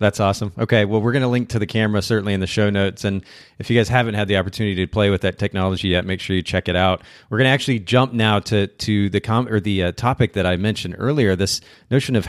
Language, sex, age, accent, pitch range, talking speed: English, male, 30-49, American, 100-115 Hz, 280 wpm